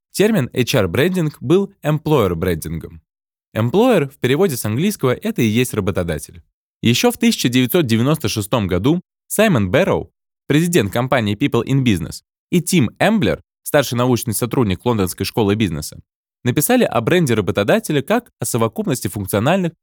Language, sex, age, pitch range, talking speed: Russian, male, 20-39, 105-155 Hz, 125 wpm